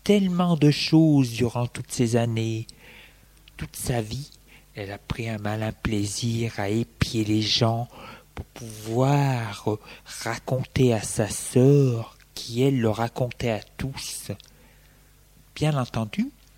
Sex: male